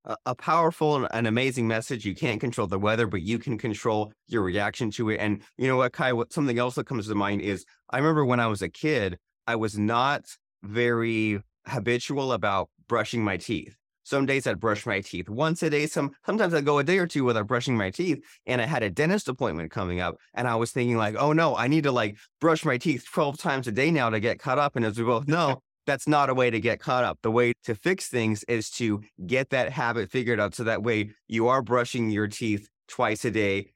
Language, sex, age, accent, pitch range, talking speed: English, male, 30-49, American, 110-140 Hz, 240 wpm